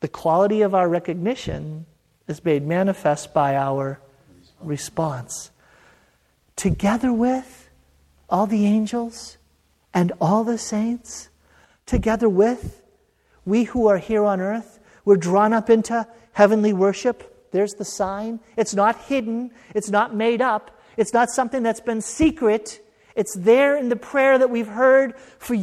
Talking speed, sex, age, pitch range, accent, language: 140 wpm, male, 40-59, 200-265 Hz, American, English